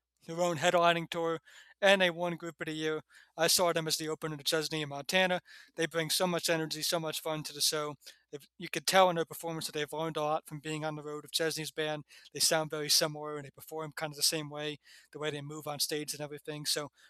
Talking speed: 255 wpm